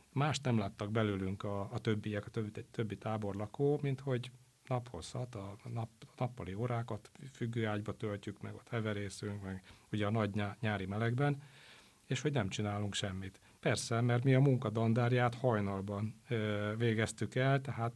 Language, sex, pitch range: Hungarian, male, 100-120 Hz